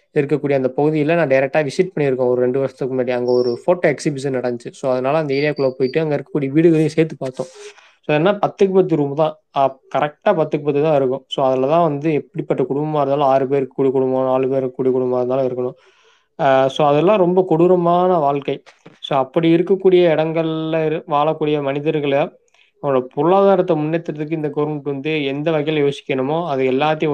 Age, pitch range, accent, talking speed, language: 20-39, 140-165 Hz, native, 170 wpm, Tamil